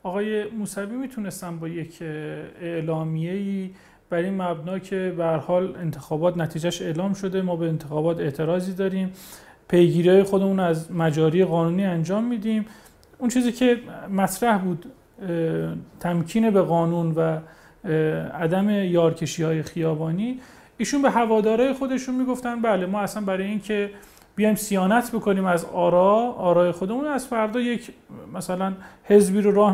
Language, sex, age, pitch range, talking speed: Persian, male, 40-59, 175-215 Hz, 135 wpm